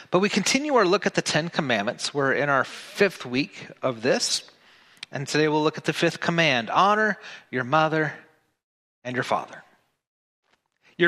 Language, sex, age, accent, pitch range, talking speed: English, male, 30-49, American, 130-175 Hz, 170 wpm